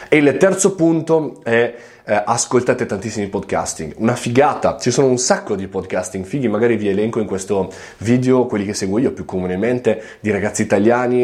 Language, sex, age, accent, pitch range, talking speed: Italian, male, 20-39, native, 95-125 Hz, 175 wpm